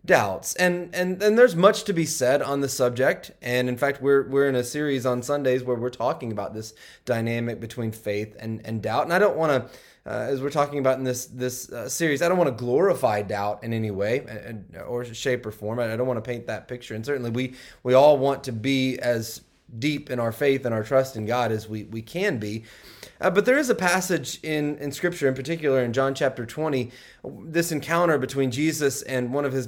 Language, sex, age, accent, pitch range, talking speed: English, male, 20-39, American, 120-170 Hz, 230 wpm